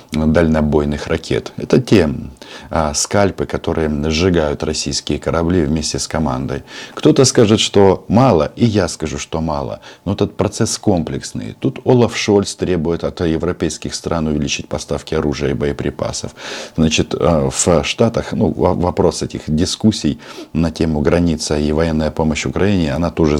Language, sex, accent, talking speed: Russian, male, native, 135 wpm